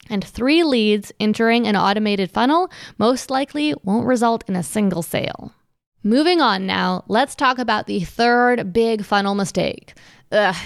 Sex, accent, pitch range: female, American, 200-255 Hz